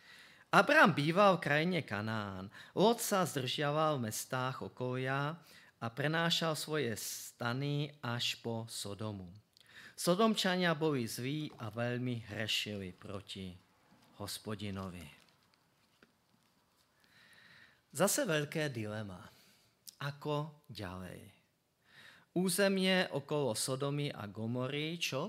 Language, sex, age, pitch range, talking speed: Slovak, male, 40-59, 120-155 Hz, 85 wpm